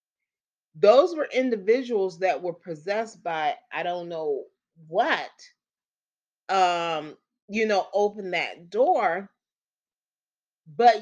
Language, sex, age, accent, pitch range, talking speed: English, female, 30-49, American, 180-245 Hz, 100 wpm